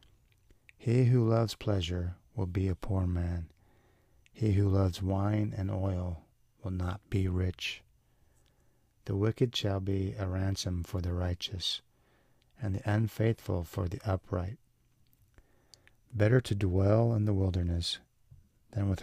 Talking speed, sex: 130 wpm, male